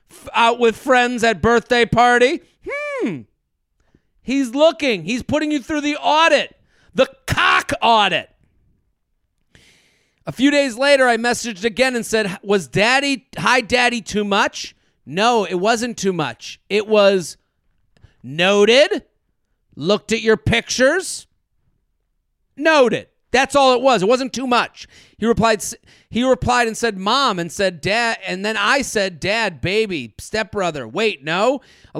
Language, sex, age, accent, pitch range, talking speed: English, male, 40-59, American, 195-250 Hz, 140 wpm